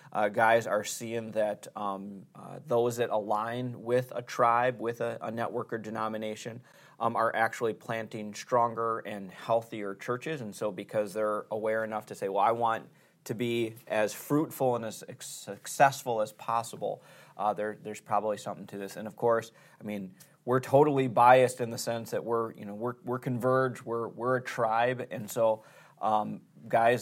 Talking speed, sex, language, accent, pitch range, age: 185 wpm, male, English, American, 105-120 Hz, 20-39